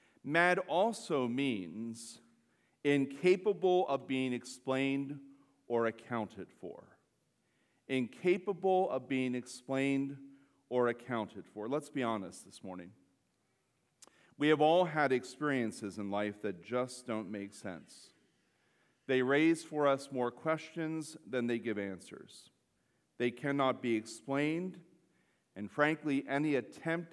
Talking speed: 115 wpm